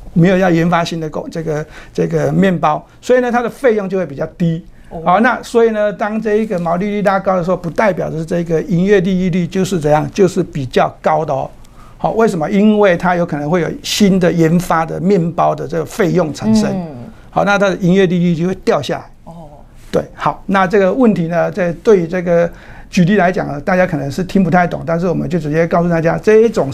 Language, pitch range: Chinese, 165-205 Hz